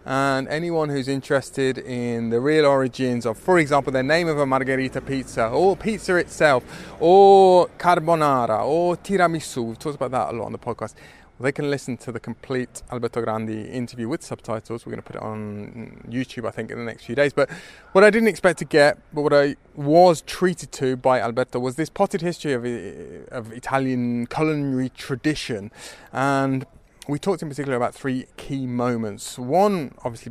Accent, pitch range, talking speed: British, 125-160 Hz, 185 wpm